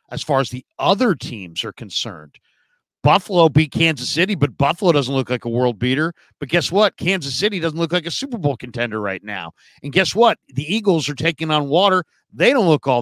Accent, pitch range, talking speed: American, 135-190 Hz, 215 wpm